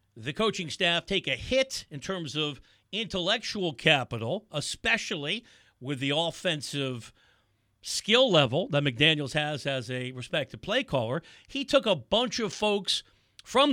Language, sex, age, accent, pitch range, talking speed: English, male, 50-69, American, 130-220 Hz, 140 wpm